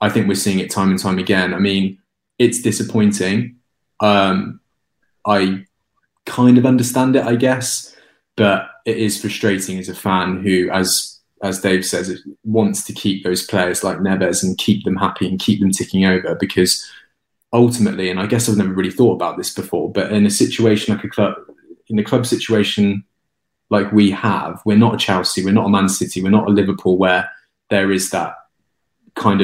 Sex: male